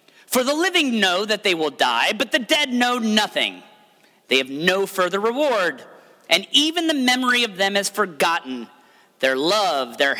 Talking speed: 170 wpm